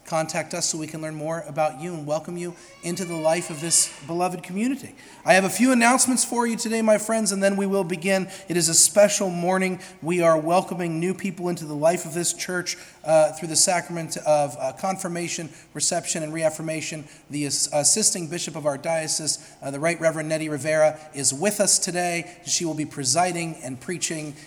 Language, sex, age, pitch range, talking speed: English, male, 40-59, 155-185 Hz, 200 wpm